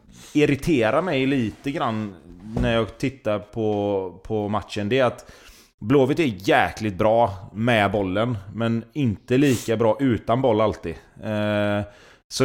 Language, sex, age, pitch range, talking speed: Swedish, male, 30-49, 100-120 Hz, 135 wpm